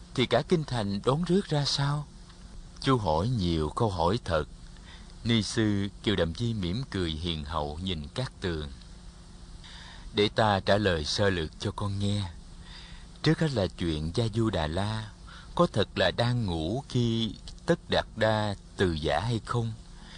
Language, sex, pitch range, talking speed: Vietnamese, male, 85-120 Hz, 160 wpm